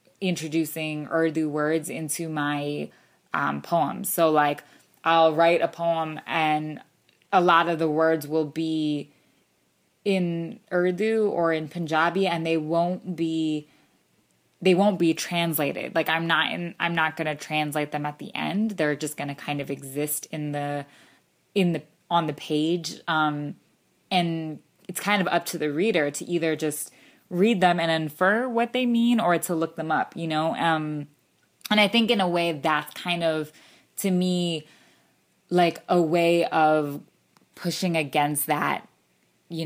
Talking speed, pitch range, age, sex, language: 160 wpm, 150-170 Hz, 20-39, female, English